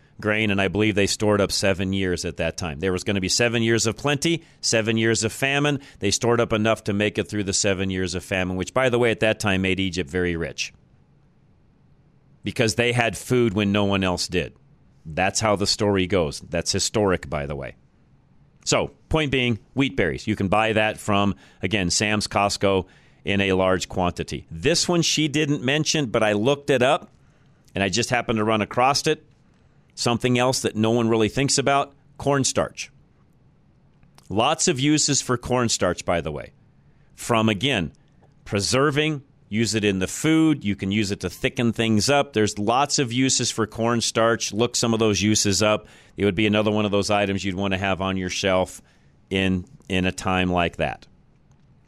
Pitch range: 95-120 Hz